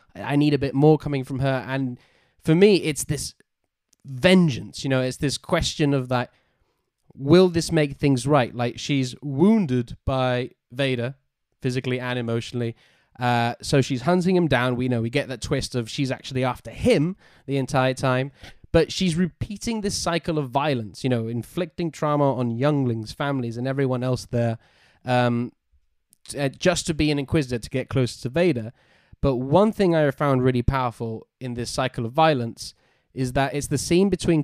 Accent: British